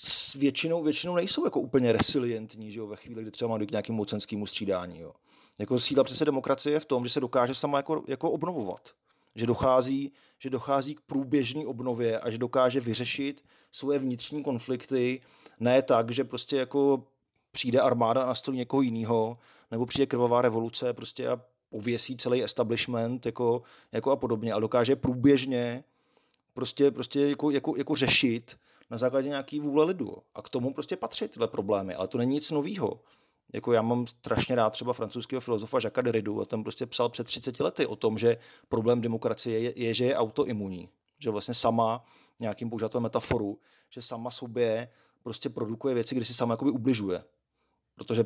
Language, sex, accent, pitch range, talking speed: Czech, male, native, 115-135 Hz, 175 wpm